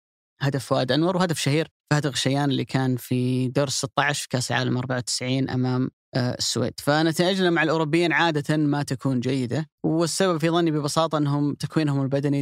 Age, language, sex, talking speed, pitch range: 20-39, Arabic, female, 150 wpm, 135-160 Hz